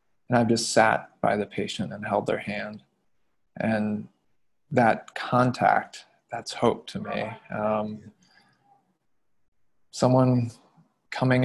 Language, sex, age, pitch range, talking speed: English, male, 20-39, 110-130 Hz, 110 wpm